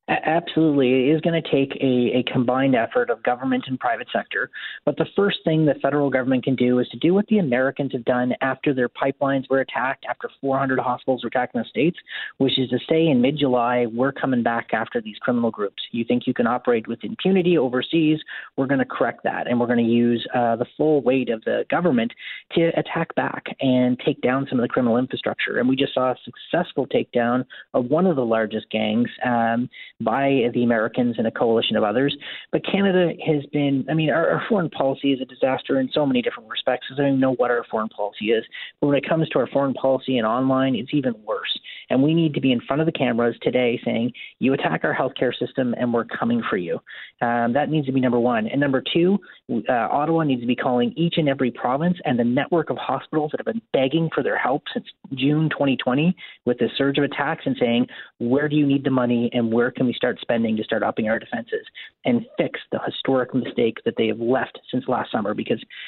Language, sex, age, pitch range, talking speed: English, male, 30-49, 120-150 Hz, 230 wpm